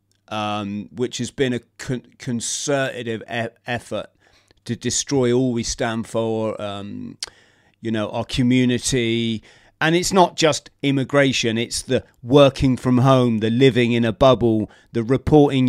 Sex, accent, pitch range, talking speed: male, British, 115-130 Hz, 135 wpm